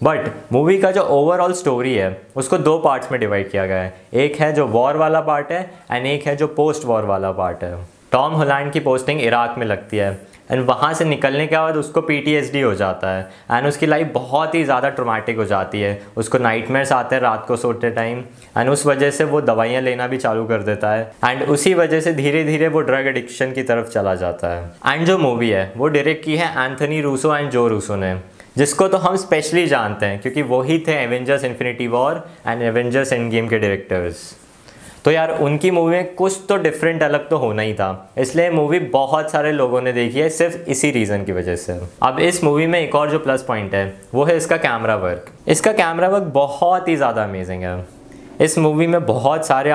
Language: Hindi